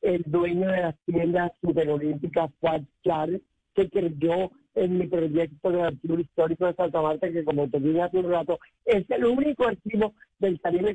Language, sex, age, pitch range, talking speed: Spanish, male, 50-69, 175-215 Hz, 160 wpm